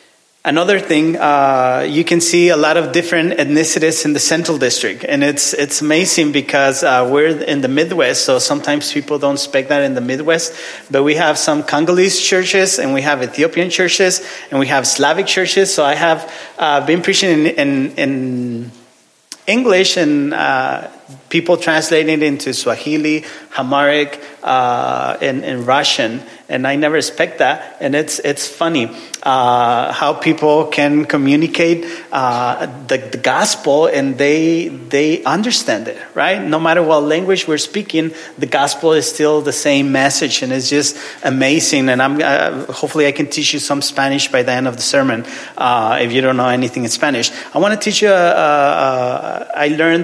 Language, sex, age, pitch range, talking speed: English, male, 30-49, 140-165 Hz, 175 wpm